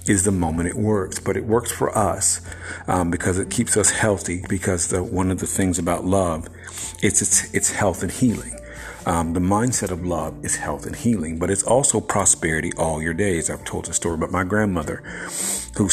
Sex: male